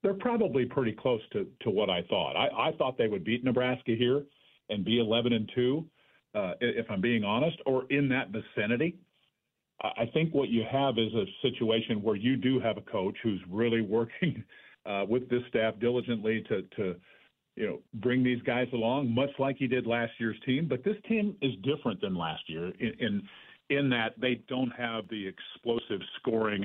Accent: American